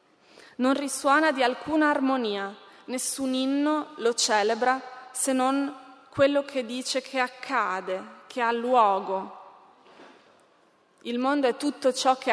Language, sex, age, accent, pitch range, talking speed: Italian, female, 20-39, native, 220-270 Hz, 120 wpm